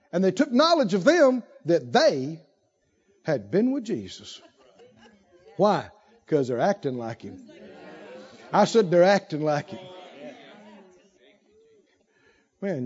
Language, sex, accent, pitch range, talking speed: English, male, American, 180-270 Hz, 115 wpm